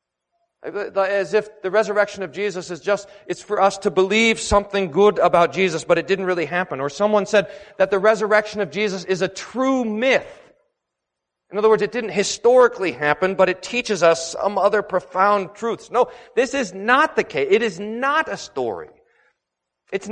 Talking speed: 180 wpm